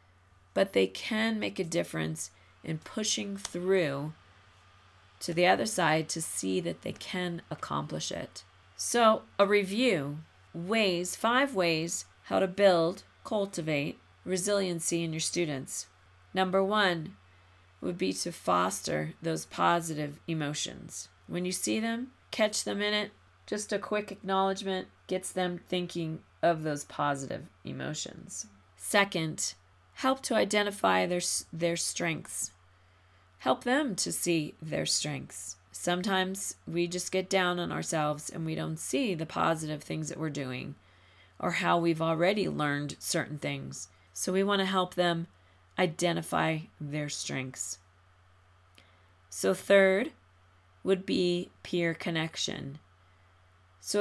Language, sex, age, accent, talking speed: English, female, 40-59, American, 130 wpm